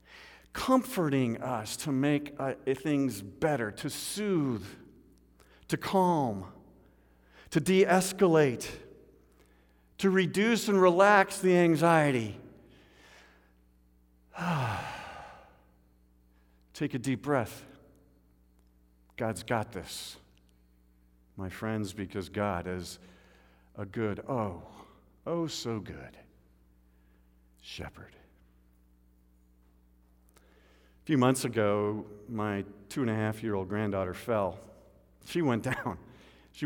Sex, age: male, 50-69